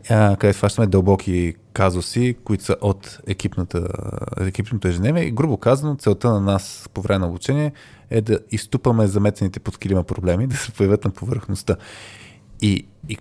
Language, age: Bulgarian, 20-39